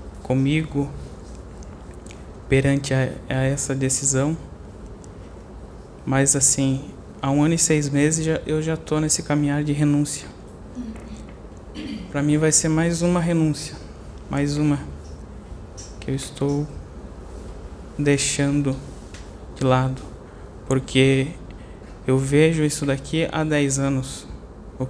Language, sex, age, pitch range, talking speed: Portuguese, male, 20-39, 90-145 Hz, 110 wpm